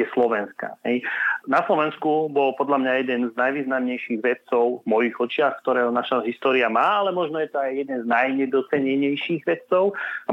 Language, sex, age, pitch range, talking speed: Slovak, male, 30-49, 125-150 Hz, 165 wpm